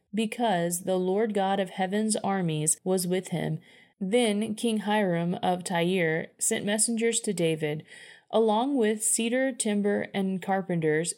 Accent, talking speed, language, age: American, 135 wpm, English, 30-49